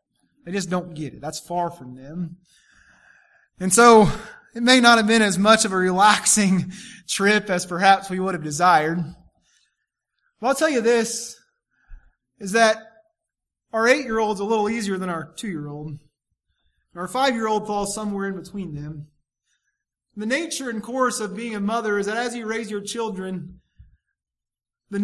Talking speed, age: 160 wpm, 20-39